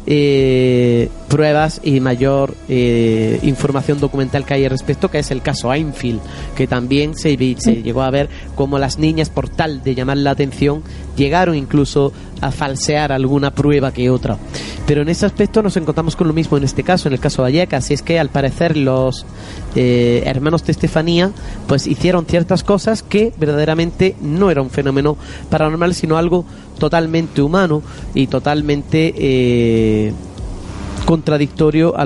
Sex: male